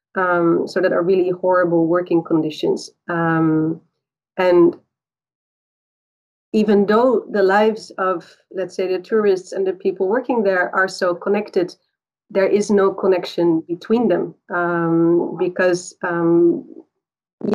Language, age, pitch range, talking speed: English, 30-49, 180-215 Hz, 125 wpm